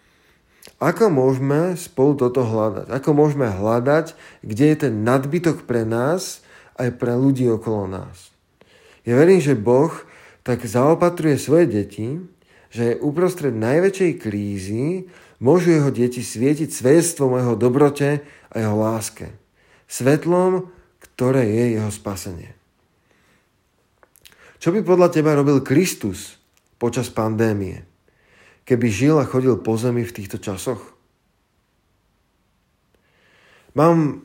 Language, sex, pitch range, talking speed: Slovak, male, 110-145 Hz, 115 wpm